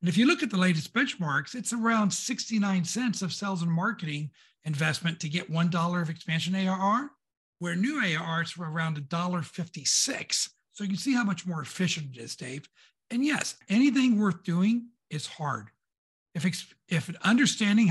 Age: 60-79